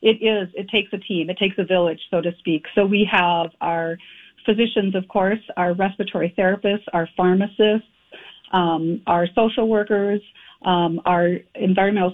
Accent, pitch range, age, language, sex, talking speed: American, 175-210 Hz, 40-59, English, female, 160 wpm